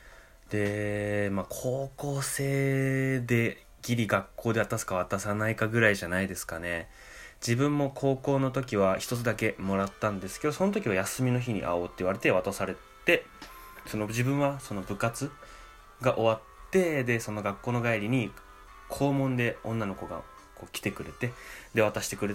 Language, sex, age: Japanese, male, 20-39